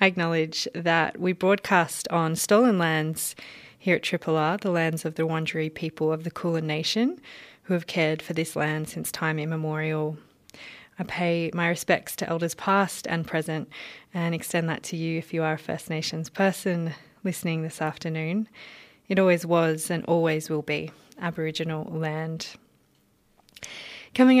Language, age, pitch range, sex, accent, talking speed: English, 20-39, 160-180 Hz, female, Australian, 160 wpm